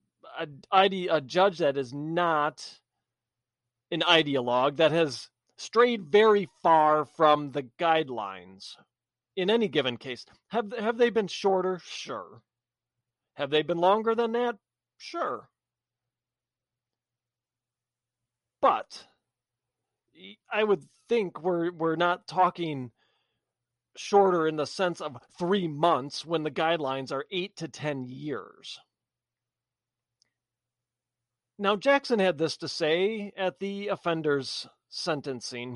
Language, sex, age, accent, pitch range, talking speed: English, male, 40-59, American, 125-195 Hz, 110 wpm